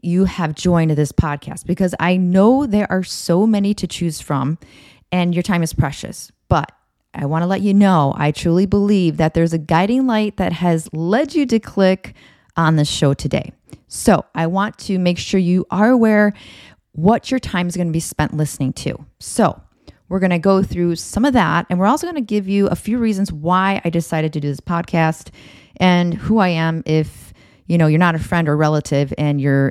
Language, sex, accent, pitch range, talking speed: English, female, American, 160-205 Hz, 210 wpm